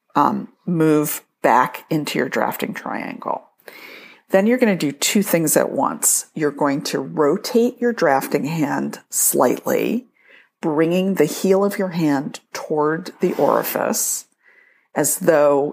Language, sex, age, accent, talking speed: English, female, 50-69, American, 135 wpm